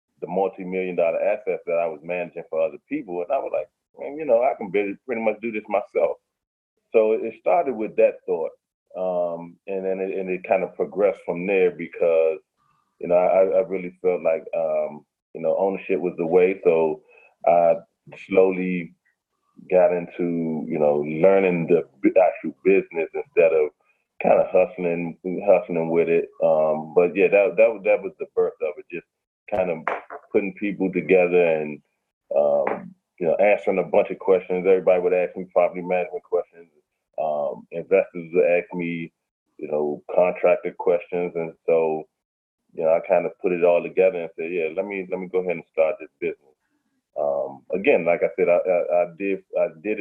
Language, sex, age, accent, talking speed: English, male, 30-49, American, 180 wpm